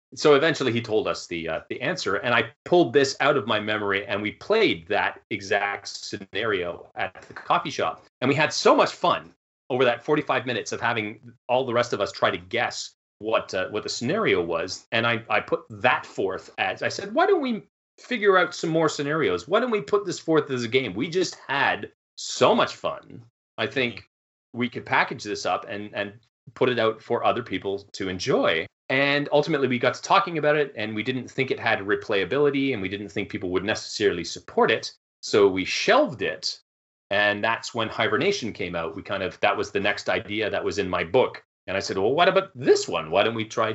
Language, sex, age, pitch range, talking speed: English, male, 30-49, 105-145 Hz, 220 wpm